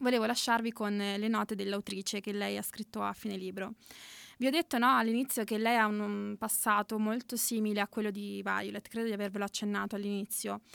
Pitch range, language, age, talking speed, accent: 195-220 Hz, Italian, 20-39, 190 wpm, native